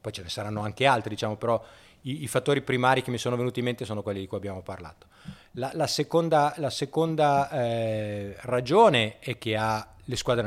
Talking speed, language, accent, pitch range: 205 wpm, Italian, native, 105-125 Hz